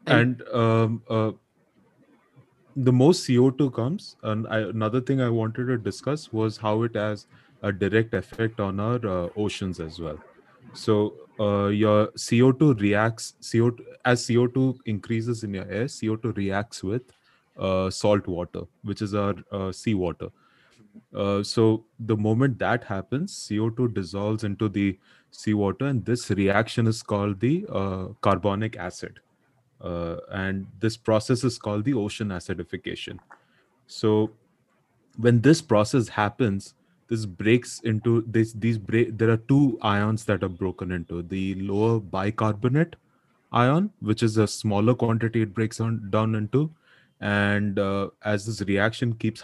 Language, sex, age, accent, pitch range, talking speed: Hindi, male, 30-49, native, 100-120 Hz, 150 wpm